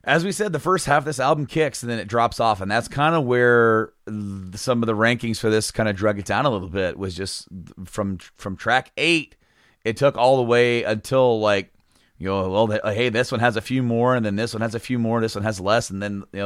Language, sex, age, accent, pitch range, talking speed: English, male, 30-49, American, 100-125 Hz, 265 wpm